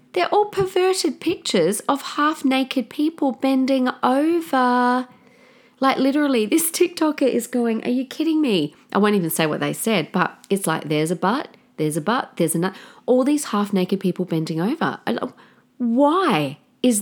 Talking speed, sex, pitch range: 170 wpm, female, 170-255 Hz